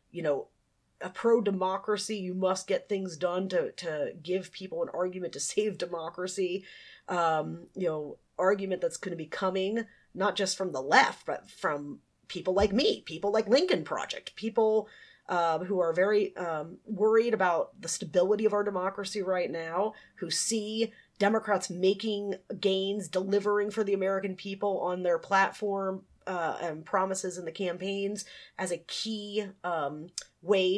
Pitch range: 180-210 Hz